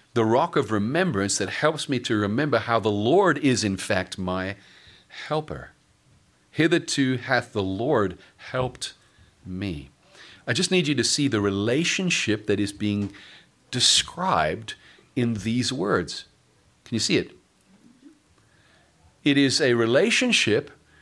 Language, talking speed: English, 130 wpm